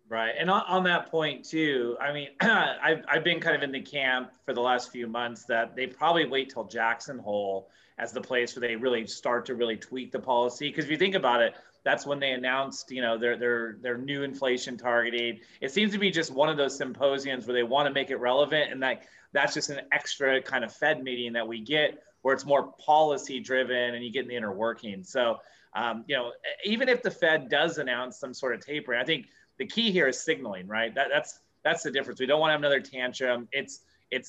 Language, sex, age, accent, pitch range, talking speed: English, male, 30-49, American, 125-155 Hz, 240 wpm